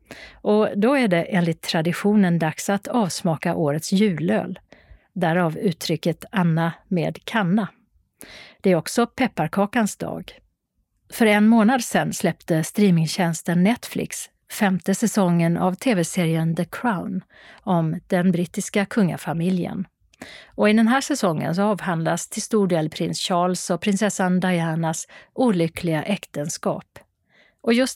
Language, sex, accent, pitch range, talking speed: Swedish, female, native, 170-210 Hz, 120 wpm